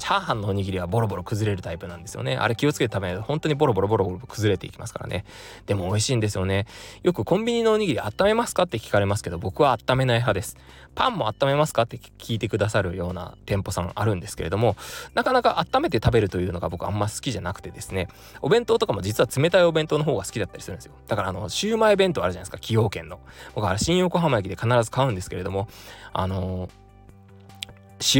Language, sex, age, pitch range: Japanese, male, 20-39, 95-140 Hz